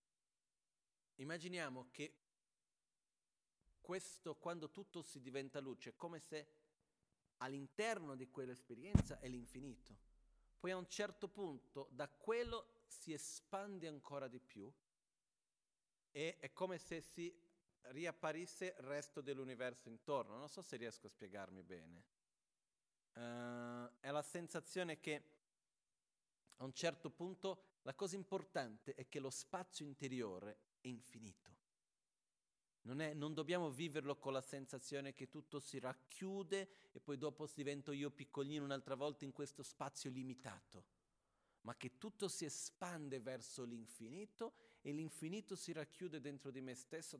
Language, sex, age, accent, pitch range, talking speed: Italian, male, 40-59, native, 125-165 Hz, 130 wpm